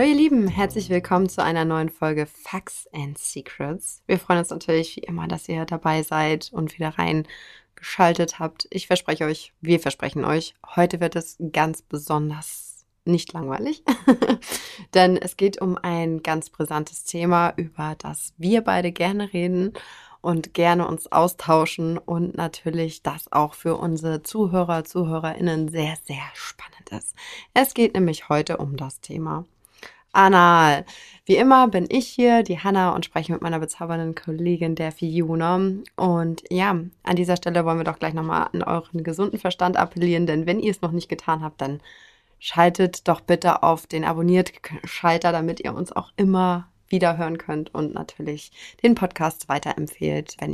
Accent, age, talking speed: German, 20-39, 160 wpm